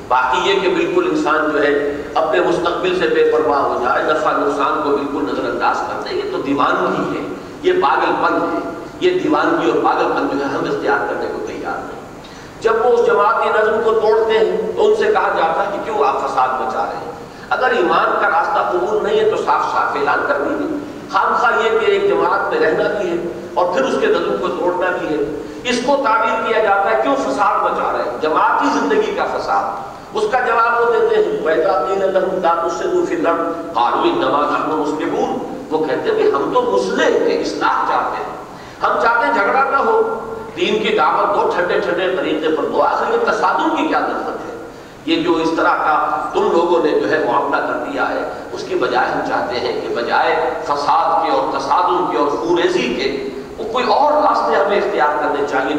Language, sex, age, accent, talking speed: English, male, 50-69, Indian, 120 wpm